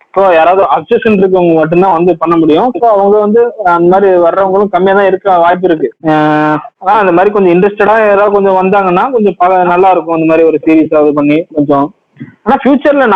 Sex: male